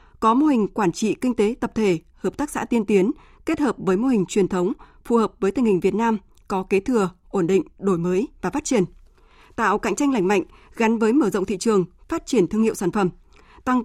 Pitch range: 190-240 Hz